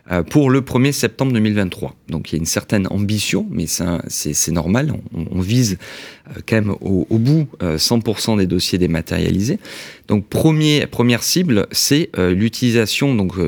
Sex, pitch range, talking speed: male, 95-120 Hz, 165 wpm